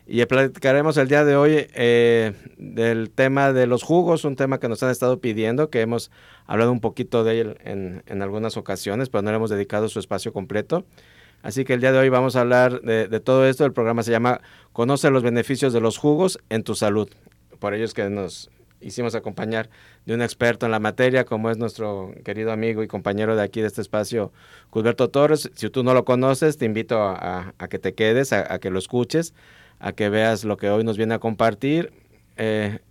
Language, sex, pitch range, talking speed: Spanish, male, 105-125 Hz, 220 wpm